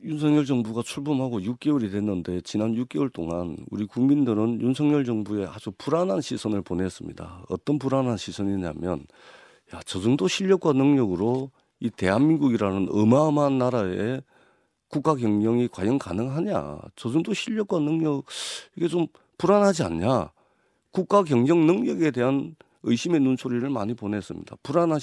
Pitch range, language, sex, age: 115-165 Hz, Korean, male, 40-59